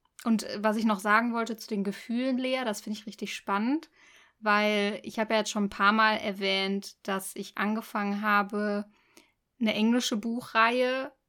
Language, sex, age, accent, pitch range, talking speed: German, female, 20-39, German, 205-240 Hz, 170 wpm